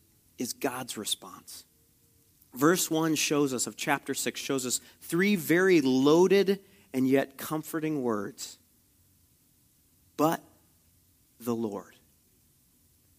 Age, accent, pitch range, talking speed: 40-59, American, 115-155 Hz, 100 wpm